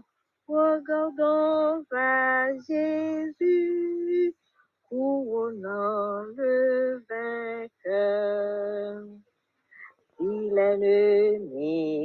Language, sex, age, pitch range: English, female, 30-49, 220-310 Hz